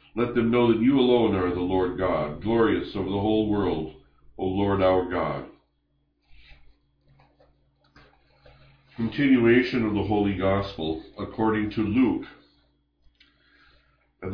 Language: English